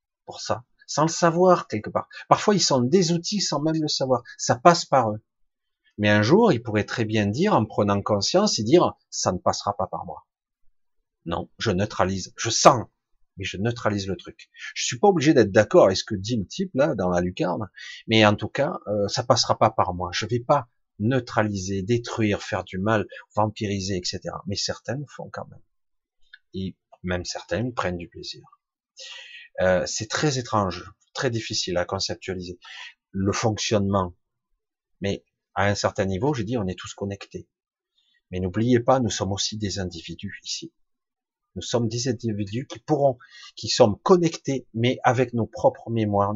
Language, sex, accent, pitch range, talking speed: French, male, French, 100-135 Hz, 185 wpm